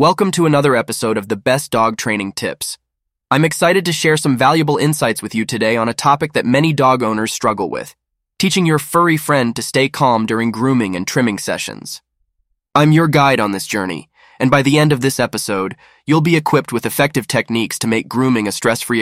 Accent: American